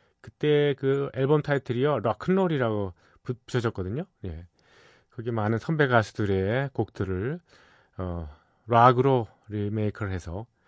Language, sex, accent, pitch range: Korean, male, native, 95-135 Hz